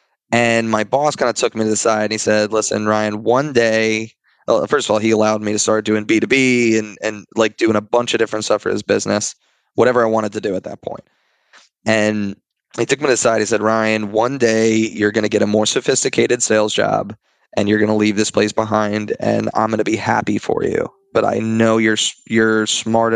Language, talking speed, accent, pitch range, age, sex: English, 235 wpm, American, 105-115 Hz, 20-39, male